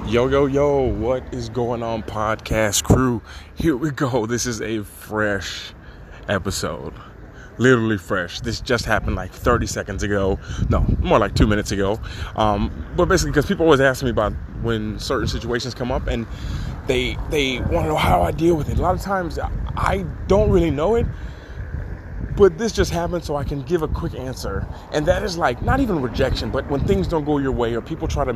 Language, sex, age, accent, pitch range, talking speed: English, male, 20-39, American, 105-145 Hz, 200 wpm